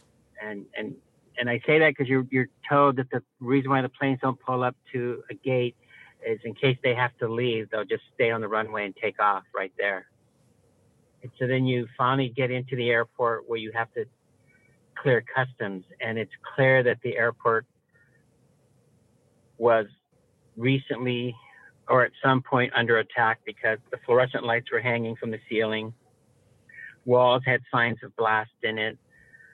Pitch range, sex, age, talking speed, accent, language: 115-135 Hz, male, 50-69, 175 wpm, American, English